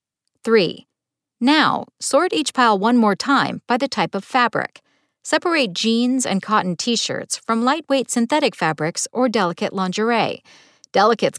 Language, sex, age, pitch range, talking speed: English, female, 50-69, 190-260 Hz, 135 wpm